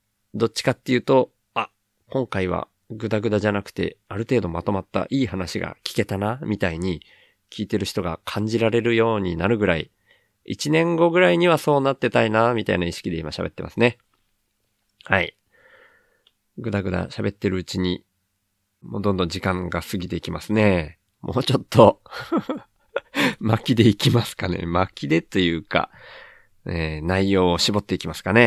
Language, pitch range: Japanese, 95-115 Hz